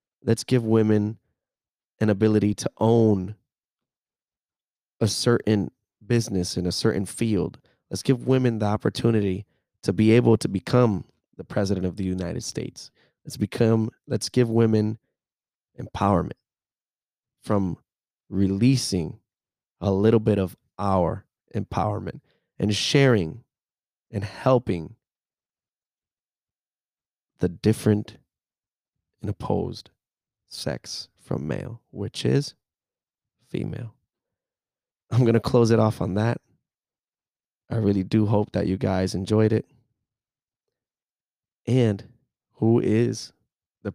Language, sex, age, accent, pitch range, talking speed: English, male, 20-39, American, 100-120 Hz, 110 wpm